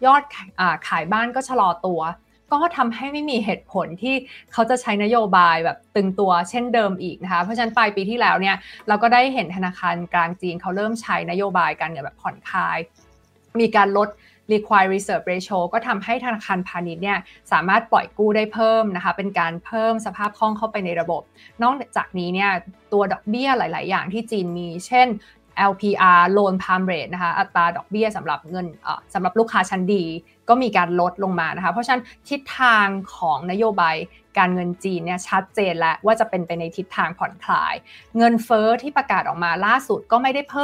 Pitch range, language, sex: 180-230 Hz, Thai, female